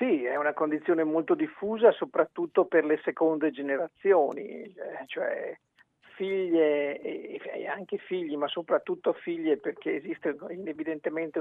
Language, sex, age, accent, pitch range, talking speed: Italian, male, 50-69, native, 155-195 Hz, 115 wpm